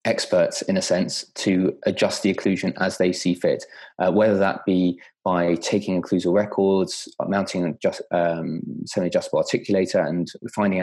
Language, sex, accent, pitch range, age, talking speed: English, male, British, 95-115 Hz, 20-39, 150 wpm